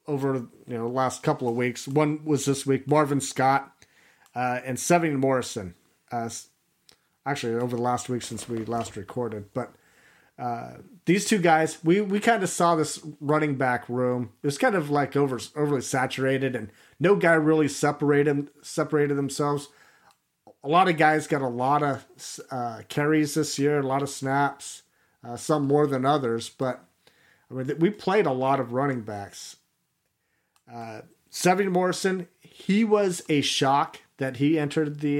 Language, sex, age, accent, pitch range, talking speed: English, male, 40-59, American, 125-155 Hz, 170 wpm